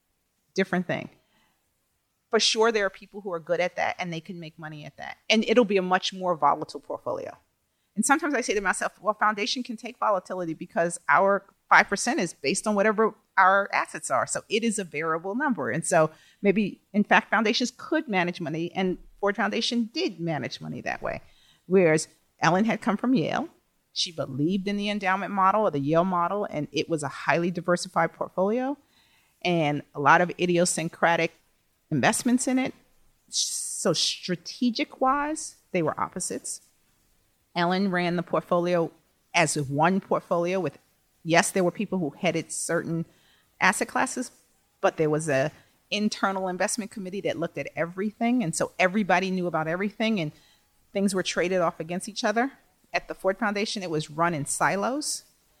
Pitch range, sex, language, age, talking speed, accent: 165-215 Hz, female, English, 40-59, 170 wpm, American